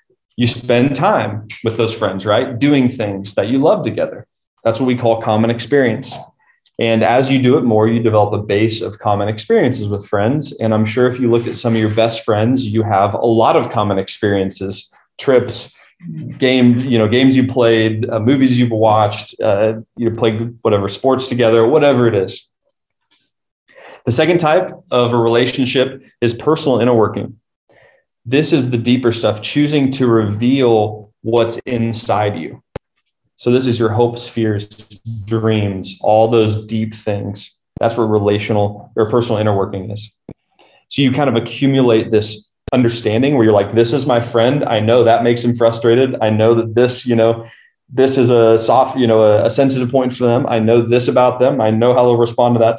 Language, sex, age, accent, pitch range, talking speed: English, male, 20-39, American, 110-125 Hz, 185 wpm